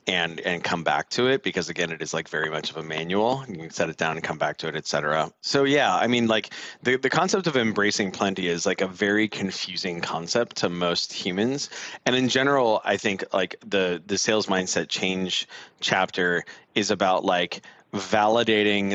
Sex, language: male, English